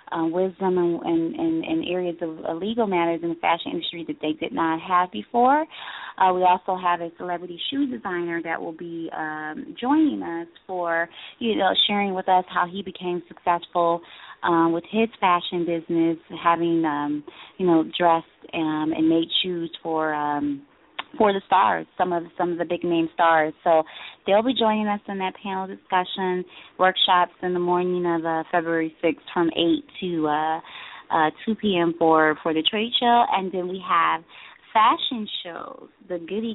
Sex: female